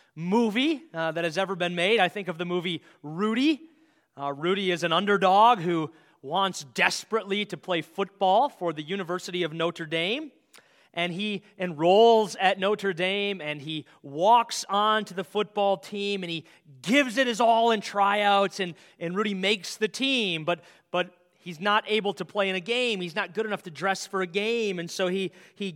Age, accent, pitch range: 30-49, American, 165-210 Hz